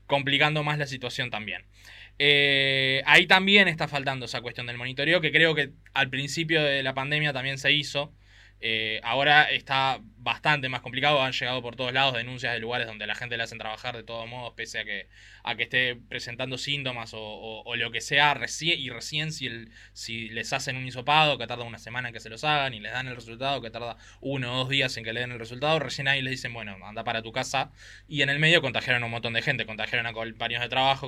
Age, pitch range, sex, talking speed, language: 20-39, 115-150 Hz, male, 235 wpm, Spanish